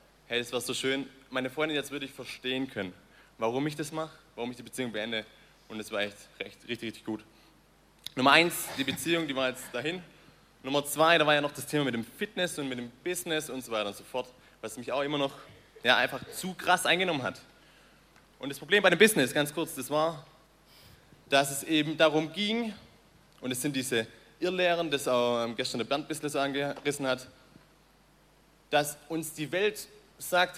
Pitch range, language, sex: 125-155 Hz, German, male